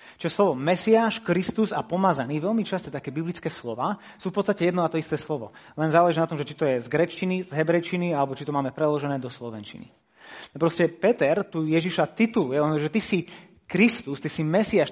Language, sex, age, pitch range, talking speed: Slovak, male, 30-49, 145-210 Hz, 205 wpm